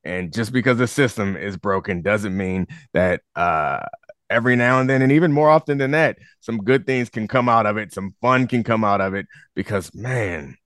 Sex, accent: male, American